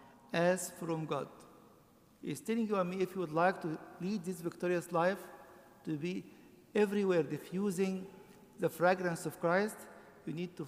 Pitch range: 160-190 Hz